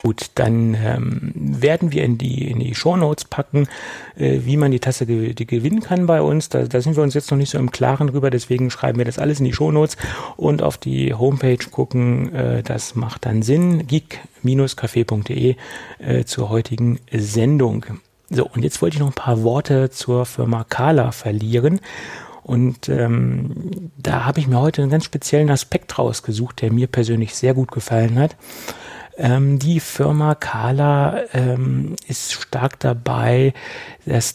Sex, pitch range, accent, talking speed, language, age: male, 120-140 Hz, German, 175 wpm, German, 40-59